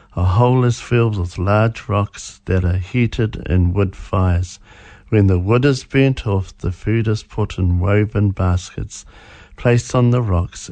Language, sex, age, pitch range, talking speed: English, male, 50-69, 95-110 Hz, 170 wpm